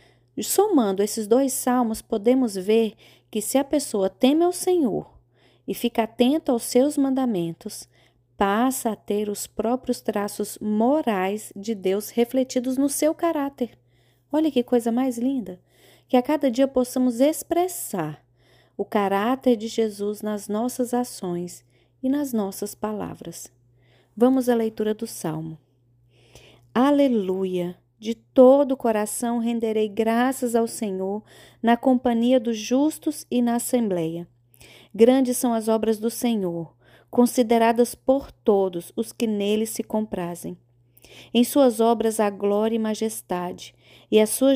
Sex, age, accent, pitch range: female, 20-39, Brazilian, 190-250 Hz